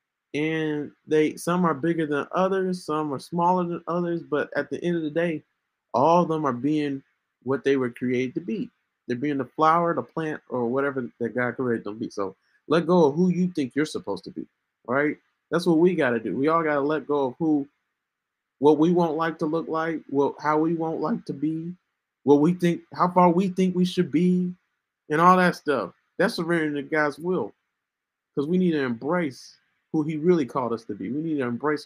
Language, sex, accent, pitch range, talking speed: English, male, American, 130-165 Hz, 225 wpm